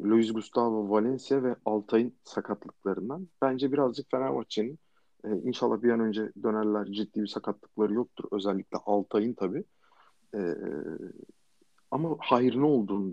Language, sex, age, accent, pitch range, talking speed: Turkish, male, 50-69, native, 110-140 Hz, 125 wpm